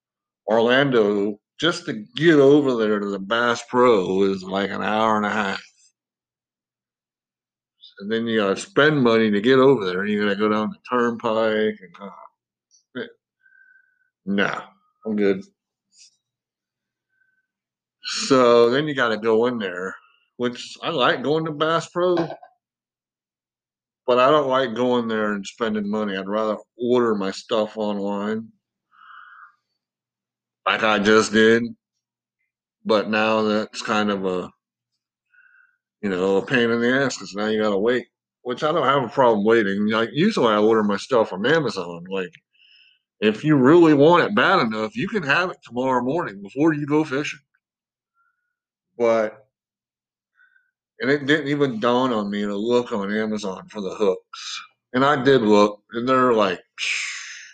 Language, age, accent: English, 60-79, American